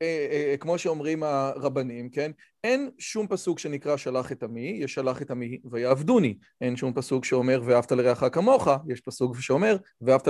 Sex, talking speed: male, 150 wpm